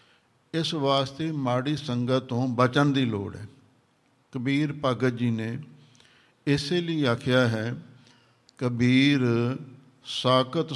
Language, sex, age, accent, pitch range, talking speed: English, male, 60-79, Indian, 120-140 Hz, 85 wpm